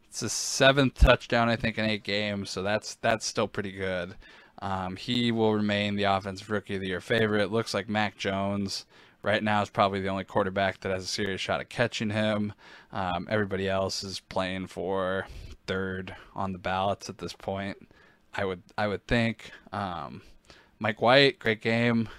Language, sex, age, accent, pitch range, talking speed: English, male, 20-39, American, 95-115 Hz, 185 wpm